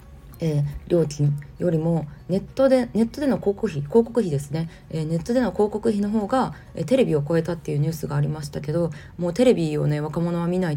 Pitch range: 145-175 Hz